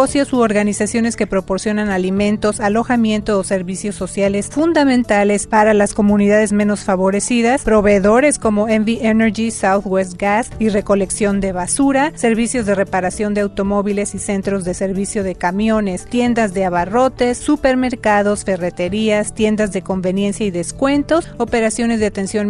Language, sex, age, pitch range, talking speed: Spanish, female, 30-49, 200-240 Hz, 135 wpm